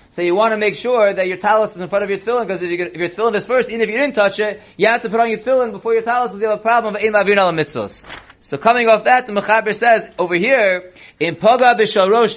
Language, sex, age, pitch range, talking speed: English, male, 30-49, 190-235 Hz, 285 wpm